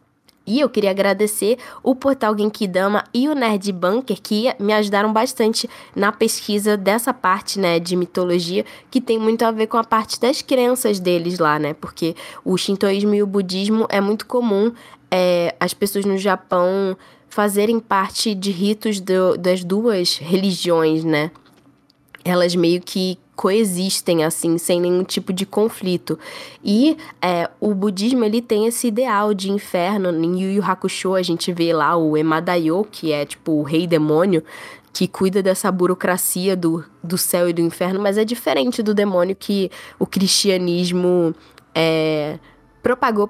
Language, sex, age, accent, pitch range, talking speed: Portuguese, female, 10-29, Brazilian, 170-210 Hz, 155 wpm